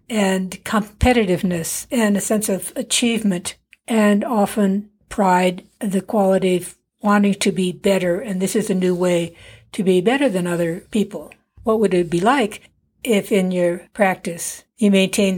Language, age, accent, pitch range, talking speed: English, 60-79, American, 185-225 Hz, 155 wpm